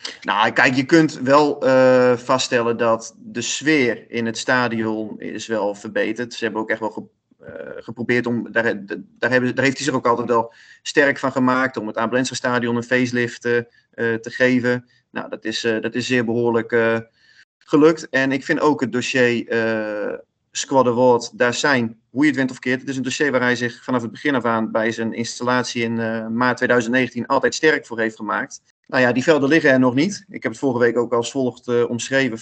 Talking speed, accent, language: 205 wpm, Dutch, English